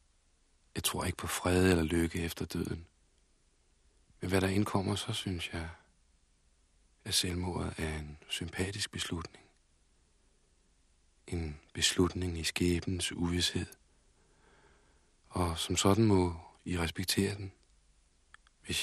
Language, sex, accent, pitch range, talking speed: Danish, male, native, 70-90 Hz, 110 wpm